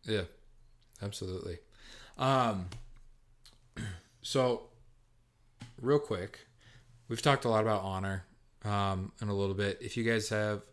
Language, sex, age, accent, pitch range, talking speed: English, male, 30-49, American, 95-120 Hz, 115 wpm